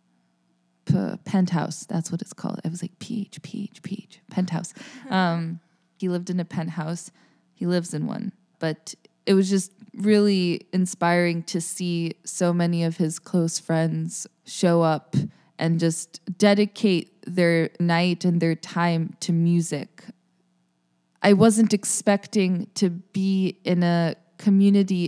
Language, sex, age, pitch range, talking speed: English, female, 20-39, 165-190 Hz, 130 wpm